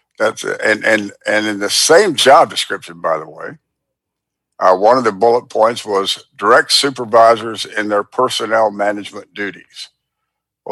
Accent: American